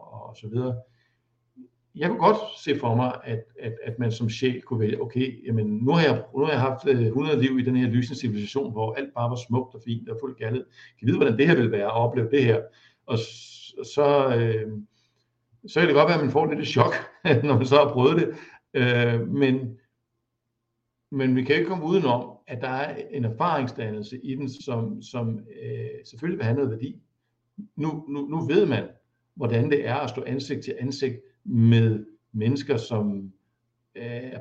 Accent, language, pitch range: native, Danish, 115-135 Hz